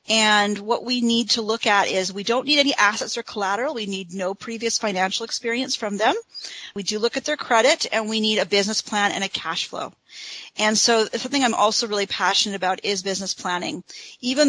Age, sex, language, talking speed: 40-59, female, English, 210 wpm